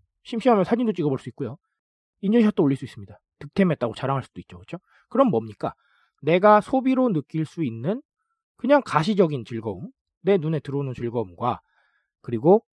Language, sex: Korean, male